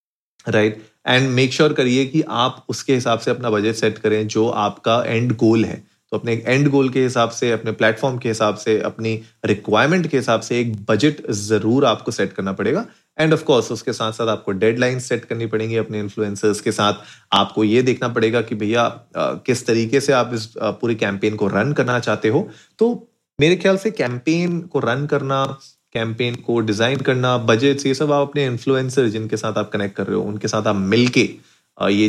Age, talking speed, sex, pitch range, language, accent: 30-49, 200 wpm, male, 110-140 Hz, Hindi, native